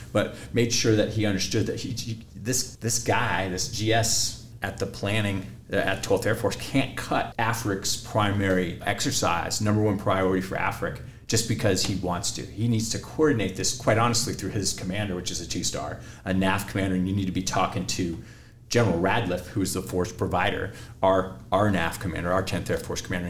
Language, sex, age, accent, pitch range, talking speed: English, male, 30-49, American, 95-115 Hz, 195 wpm